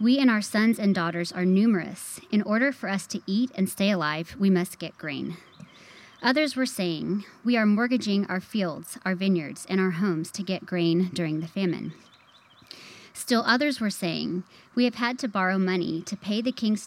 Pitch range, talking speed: 180-220 Hz, 190 wpm